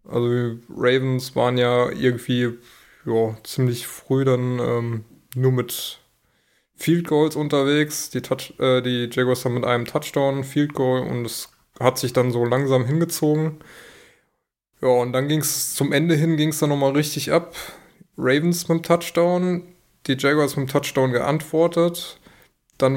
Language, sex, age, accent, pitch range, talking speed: German, male, 20-39, German, 130-155 Hz, 150 wpm